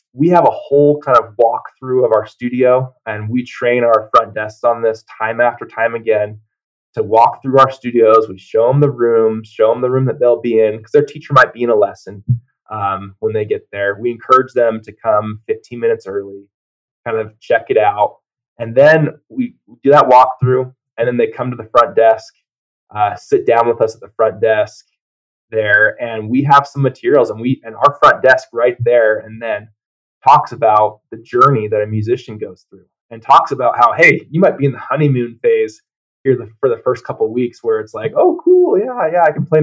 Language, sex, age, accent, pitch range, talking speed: English, male, 20-39, American, 115-155 Hz, 215 wpm